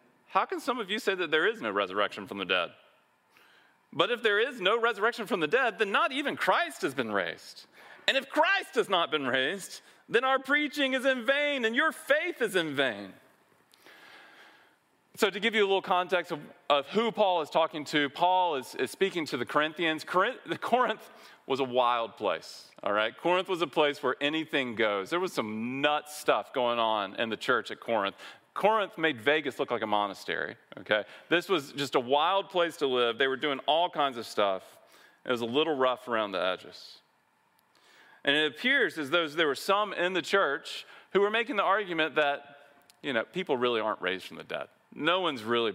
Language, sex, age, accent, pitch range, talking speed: English, male, 40-59, American, 145-230 Hz, 205 wpm